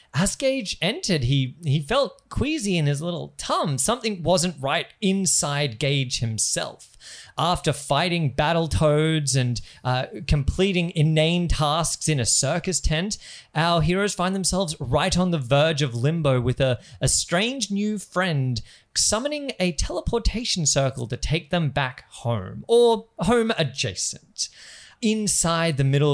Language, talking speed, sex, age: English, 140 wpm, male, 20-39